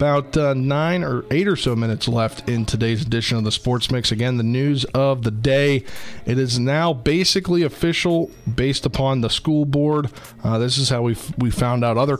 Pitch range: 115-140 Hz